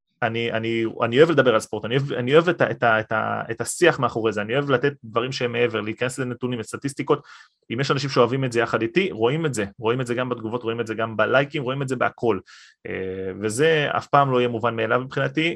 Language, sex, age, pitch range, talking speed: Hebrew, male, 20-39, 110-135 Hz, 210 wpm